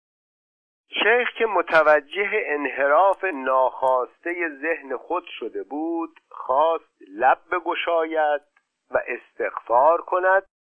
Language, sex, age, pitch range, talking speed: Persian, male, 50-69, 120-170 Hz, 85 wpm